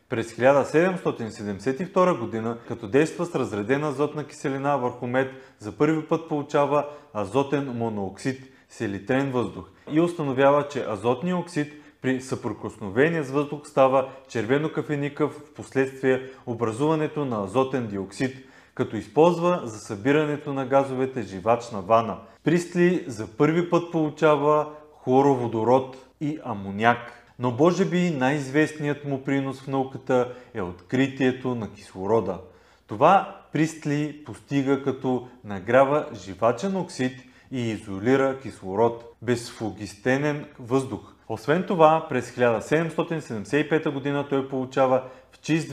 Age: 30-49